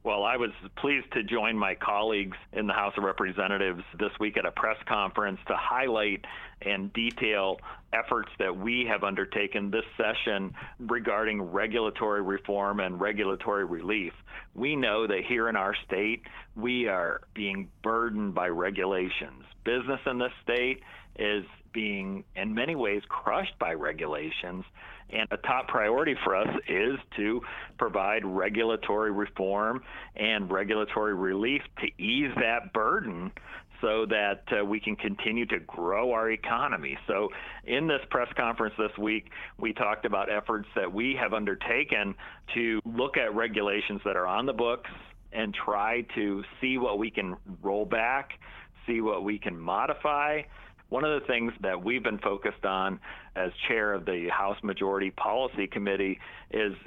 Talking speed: 155 wpm